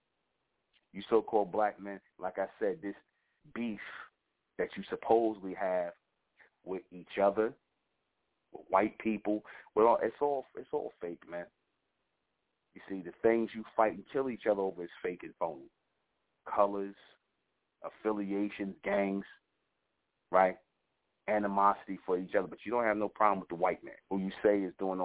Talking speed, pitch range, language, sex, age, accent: 155 wpm, 95-110 Hz, English, male, 30-49, American